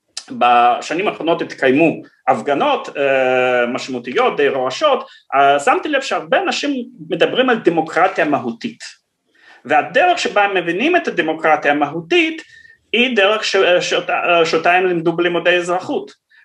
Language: Hebrew